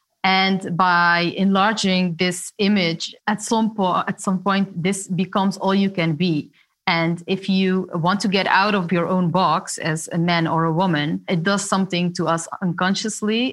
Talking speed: 170 wpm